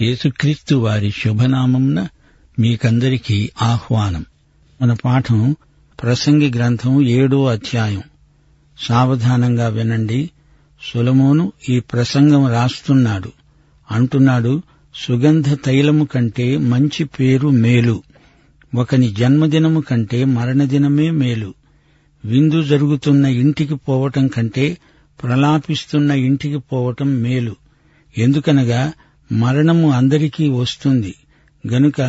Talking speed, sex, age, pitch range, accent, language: 80 wpm, male, 60-79, 125-150 Hz, native, Telugu